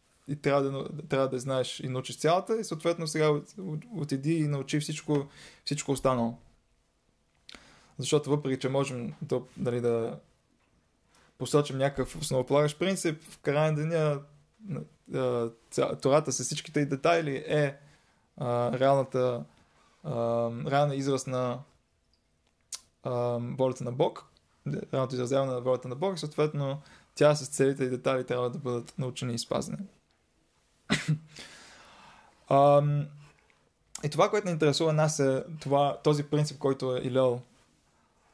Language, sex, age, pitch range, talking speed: Bulgarian, male, 20-39, 125-150 Hz, 120 wpm